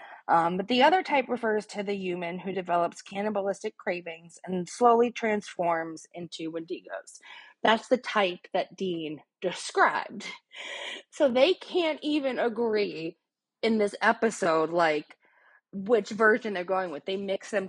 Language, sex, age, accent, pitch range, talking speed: English, female, 20-39, American, 175-235 Hz, 140 wpm